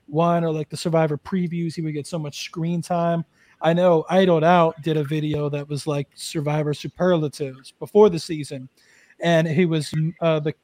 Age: 30-49